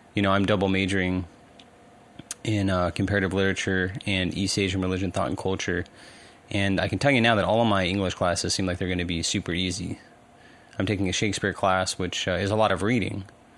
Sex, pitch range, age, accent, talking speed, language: male, 90-105 Hz, 20-39, American, 210 wpm, English